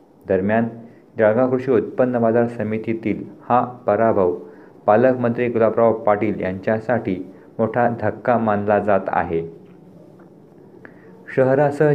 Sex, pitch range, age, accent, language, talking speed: male, 110-125 Hz, 50-69, native, Marathi, 90 wpm